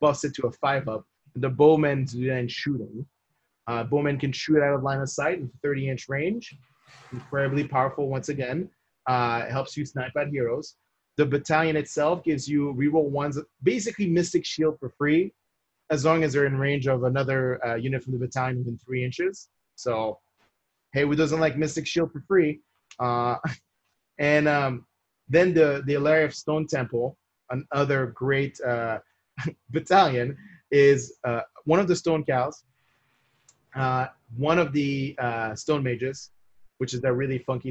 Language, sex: English, male